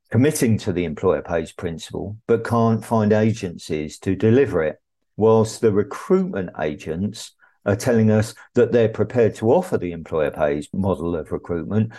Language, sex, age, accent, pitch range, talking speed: English, male, 50-69, British, 95-115 Hz, 155 wpm